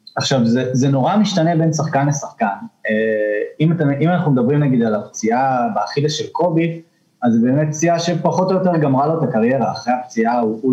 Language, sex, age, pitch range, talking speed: Hebrew, male, 20-39, 130-190 Hz, 185 wpm